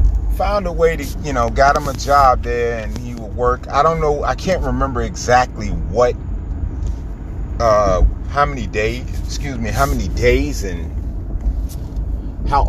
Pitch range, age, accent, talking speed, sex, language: 85-130 Hz, 30-49, American, 160 wpm, male, English